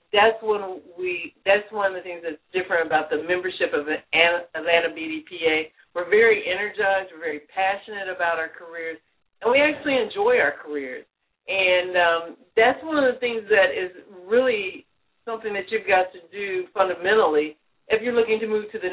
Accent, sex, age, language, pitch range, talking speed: American, female, 50-69, English, 170-240 Hz, 170 wpm